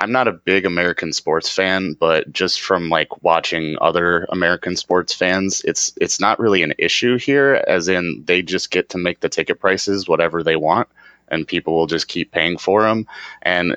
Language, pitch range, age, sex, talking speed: English, 80-95 Hz, 30-49, male, 195 wpm